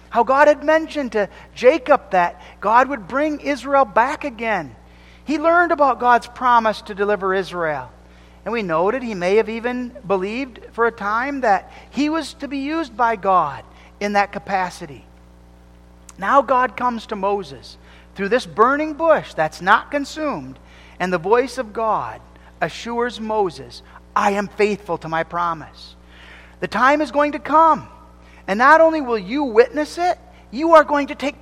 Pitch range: 170-270 Hz